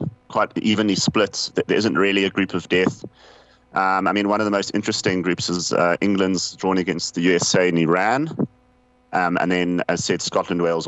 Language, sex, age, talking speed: English, male, 30-49, 195 wpm